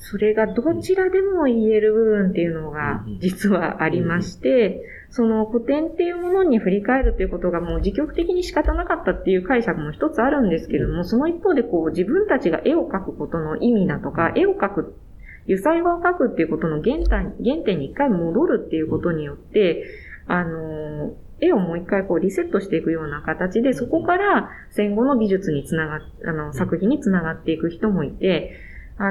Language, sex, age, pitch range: Japanese, female, 20-39, 165-250 Hz